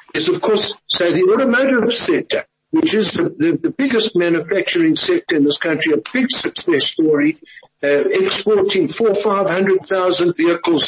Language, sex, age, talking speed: English, male, 60-79, 160 wpm